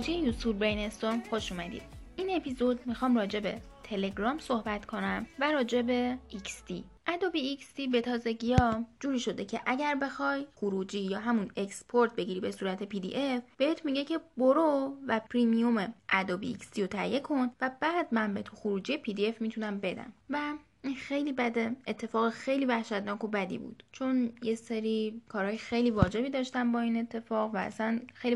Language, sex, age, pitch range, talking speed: Persian, female, 10-29, 210-260 Hz, 165 wpm